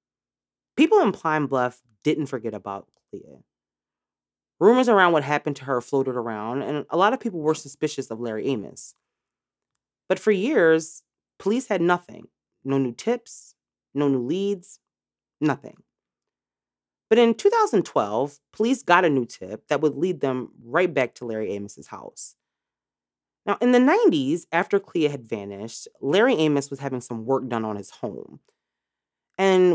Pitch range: 120-180 Hz